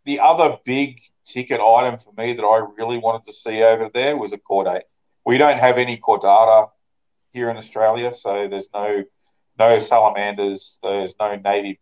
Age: 40-59